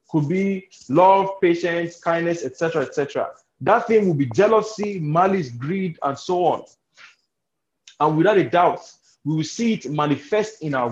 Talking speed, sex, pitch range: 165 wpm, male, 150-205 Hz